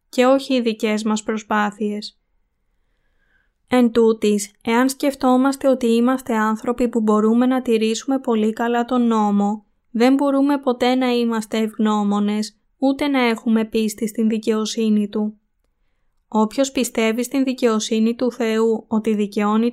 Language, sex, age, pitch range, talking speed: Greek, female, 20-39, 215-250 Hz, 125 wpm